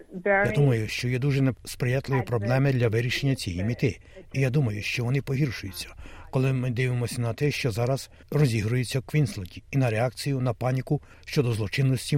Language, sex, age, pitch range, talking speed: Ukrainian, male, 60-79, 110-140 Hz, 170 wpm